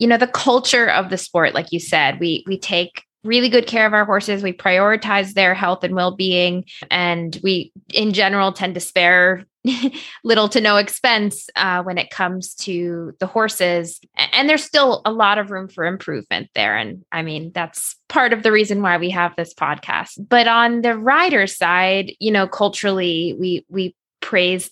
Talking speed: 185 wpm